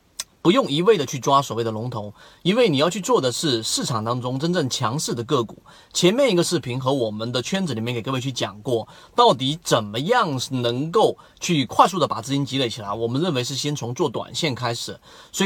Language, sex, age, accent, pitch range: Chinese, male, 30-49, native, 120-175 Hz